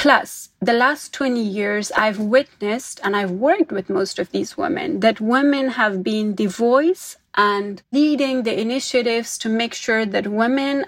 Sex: female